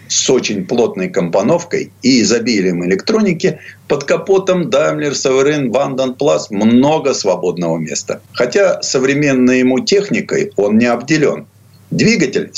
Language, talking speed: Russian, 115 wpm